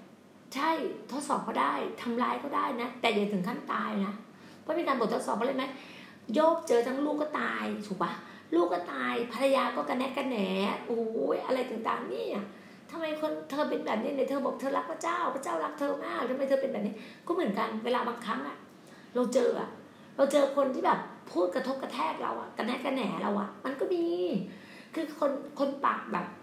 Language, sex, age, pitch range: Thai, female, 30-49, 210-275 Hz